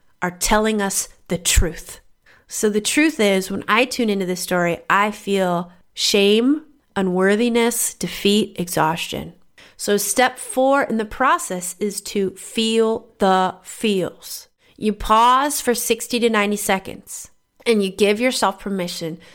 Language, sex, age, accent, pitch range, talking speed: English, female, 30-49, American, 190-235 Hz, 135 wpm